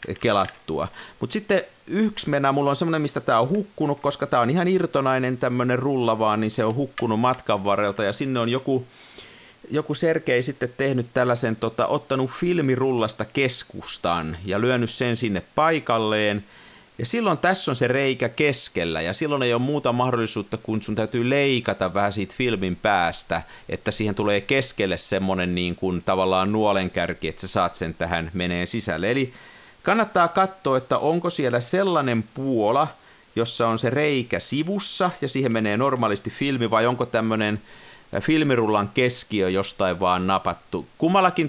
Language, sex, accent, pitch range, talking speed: Finnish, male, native, 100-140 Hz, 155 wpm